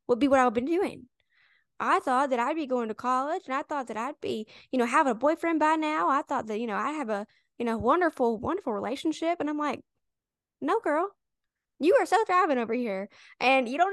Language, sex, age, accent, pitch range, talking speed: English, female, 10-29, American, 230-295 Hz, 235 wpm